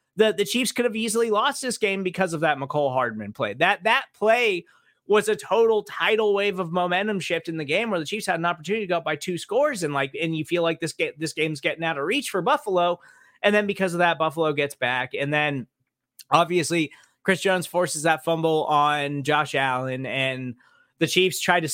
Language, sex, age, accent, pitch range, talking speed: English, male, 20-39, American, 155-220 Hz, 225 wpm